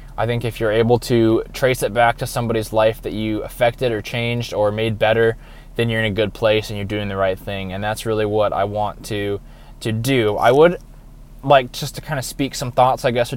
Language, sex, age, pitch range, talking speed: English, male, 20-39, 110-135 Hz, 240 wpm